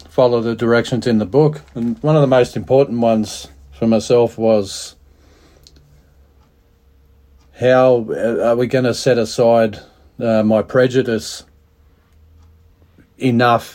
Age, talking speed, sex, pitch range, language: 40-59, 120 wpm, male, 90-120 Hz, English